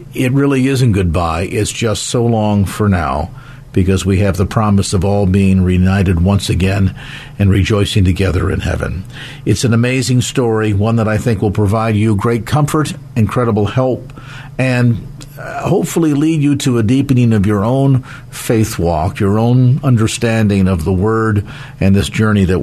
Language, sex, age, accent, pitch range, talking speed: English, male, 50-69, American, 100-130 Hz, 165 wpm